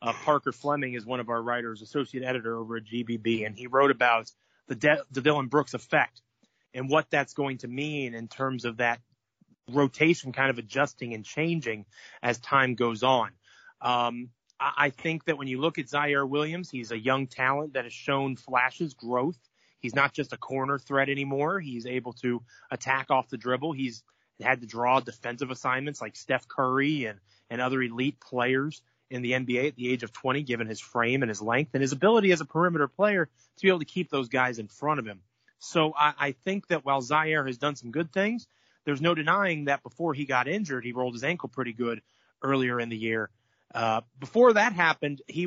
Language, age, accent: English, 30-49, American